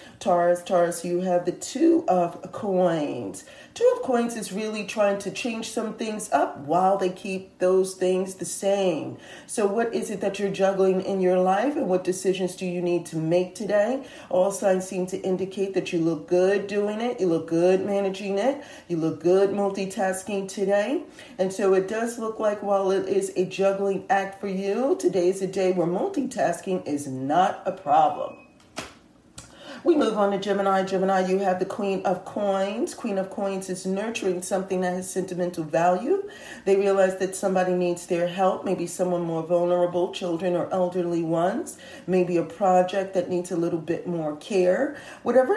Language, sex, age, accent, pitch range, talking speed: English, female, 40-59, American, 180-215 Hz, 180 wpm